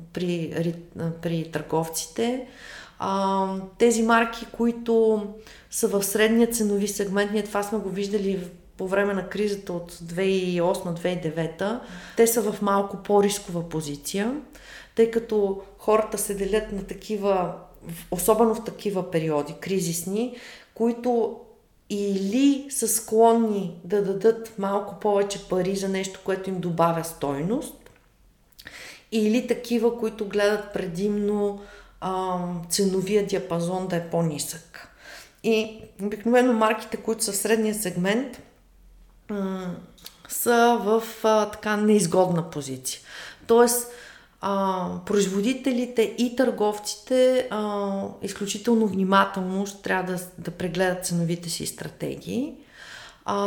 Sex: female